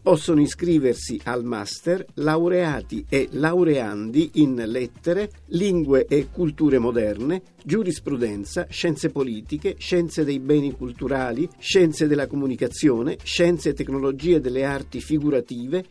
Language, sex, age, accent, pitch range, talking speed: Italian, male, 50-69, native, 130-175 Hz, 110 wpm